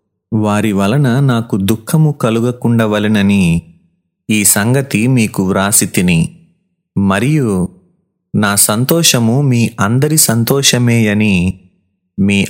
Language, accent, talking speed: Telugu, native, 80 wpm